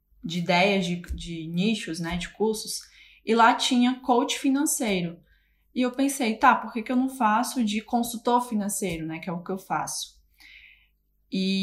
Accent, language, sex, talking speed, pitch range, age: Brazilian, Portuguese, female, 175 wpm, 180-230 Hz, 10-29